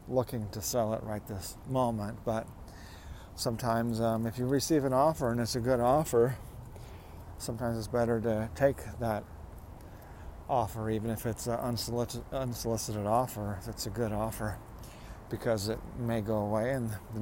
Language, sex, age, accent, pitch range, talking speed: English, male, 50-69, American, 105-125 Hz, 160 wpm